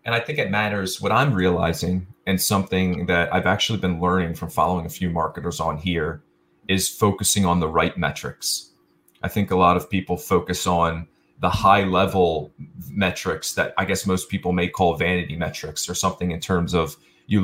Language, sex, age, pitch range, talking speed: English, male, 30-49, 85-95 Hz, 190 wpm